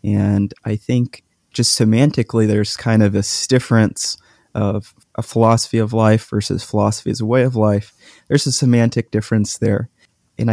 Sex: male